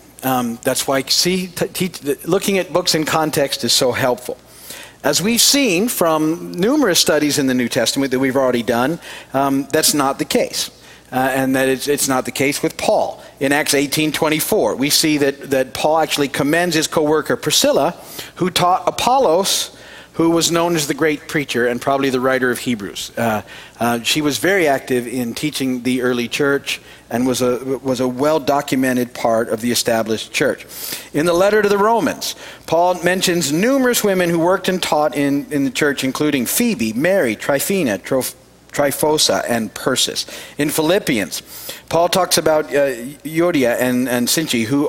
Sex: male